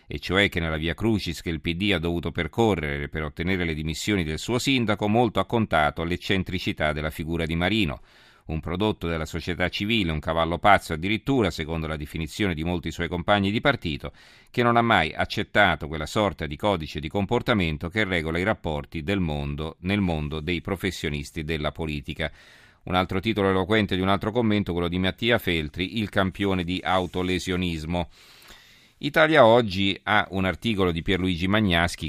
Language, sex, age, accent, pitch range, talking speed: Italian, male, 40-59, native, 85-105 Hz, 170 wpm